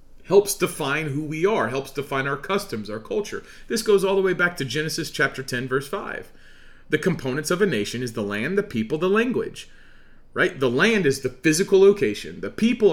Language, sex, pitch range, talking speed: English, male, 135-195 Hz, 205 wpm